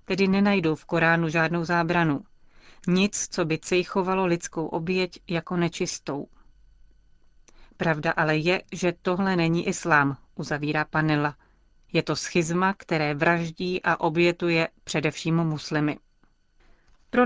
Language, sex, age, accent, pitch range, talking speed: Czech, female, 30-49, native, 165-185 Hz, 115 wpm